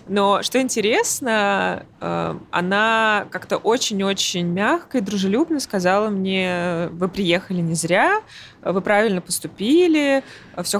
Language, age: Russian, 20-39